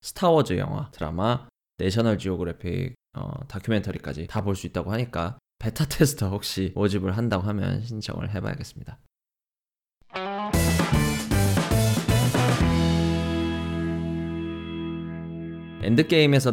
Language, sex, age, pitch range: Korean, male, 20-39, 95-130 Hz